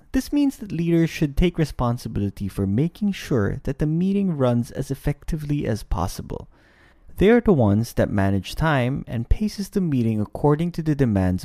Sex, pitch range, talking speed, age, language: male, 100-160 Hz, 175 wpm, 20-39, English